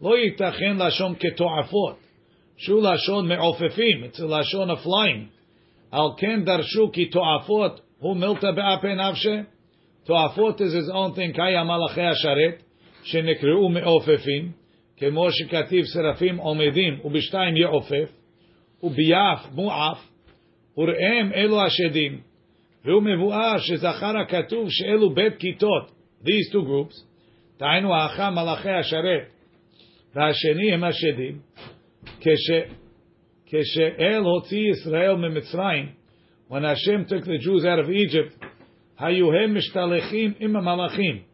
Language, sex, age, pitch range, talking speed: English, male, 50-69, 160-195 Hz, 55 wpm